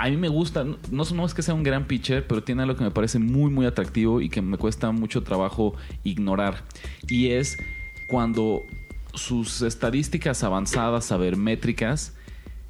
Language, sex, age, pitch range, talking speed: Spanish, male, 30-49, 95-130 Hz, 175 wpm